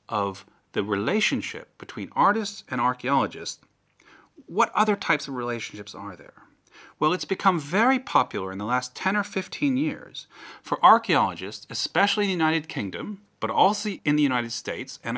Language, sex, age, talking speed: English, male, 40-59, 160 wpm